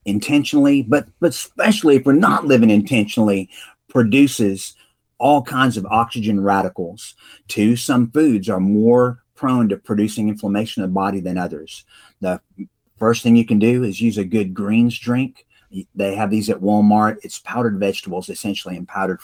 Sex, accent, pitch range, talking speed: male, American, 100-120 Hz, 160 wpm